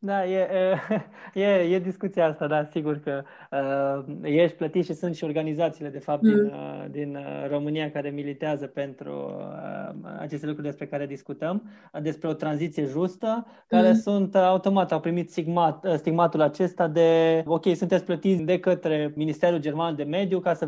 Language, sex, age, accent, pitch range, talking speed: Romanian, male, 20-39, native, 155-190 Hz, 150 wpm